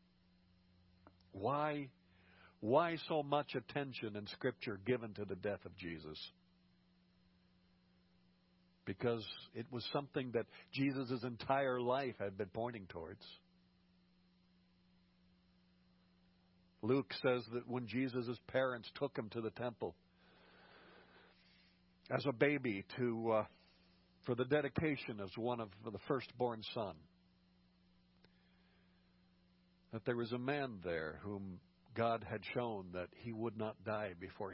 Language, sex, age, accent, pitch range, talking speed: English, male, 60-79, American, 90-115 Hz, 115 wpm